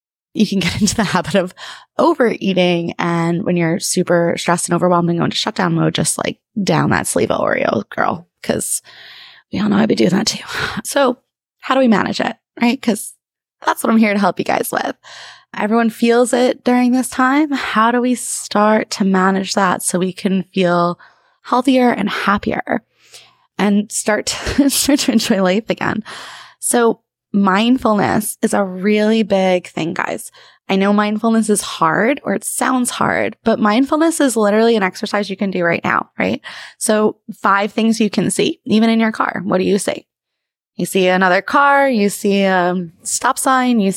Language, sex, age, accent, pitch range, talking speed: English, female, 20-39, American, 190-245 Hz, 185 wpm